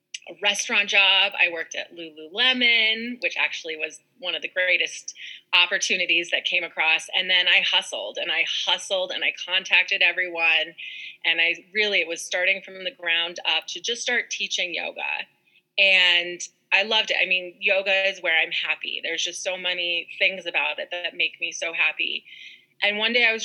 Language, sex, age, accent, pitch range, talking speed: English, female, 30-49, American, 175-215 Hz, 185 wpm